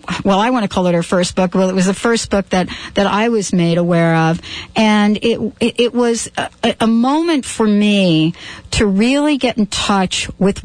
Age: 50-69